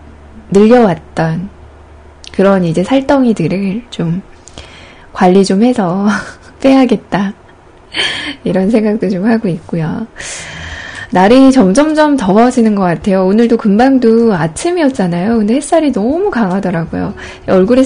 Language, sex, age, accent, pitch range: Korean, female, 10-29, native, 185-245 Hz